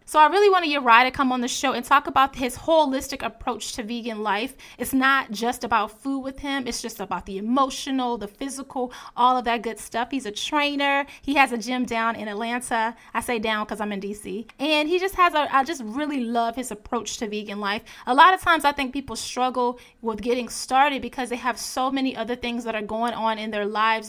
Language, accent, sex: English, American, female